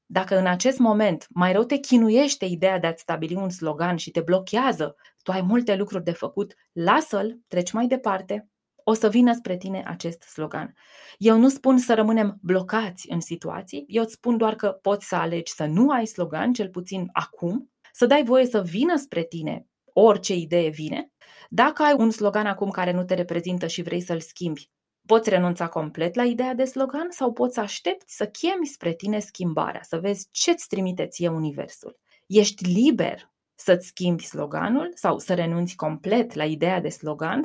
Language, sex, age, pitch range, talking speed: Romanian, female, 20-39, 170-230 Hz, 185 wpm